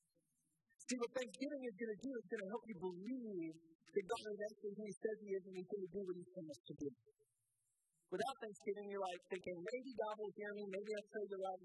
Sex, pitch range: male, 170-230 Hz